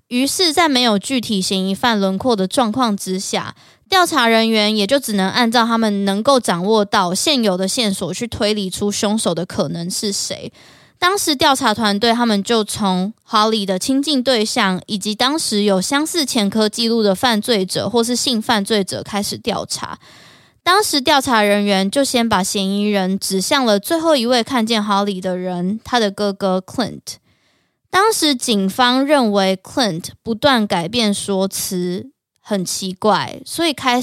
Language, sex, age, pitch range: Chinese, female, 20-39, 195-255 Hz